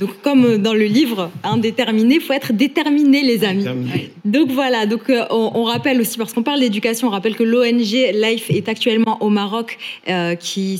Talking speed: 190 wpm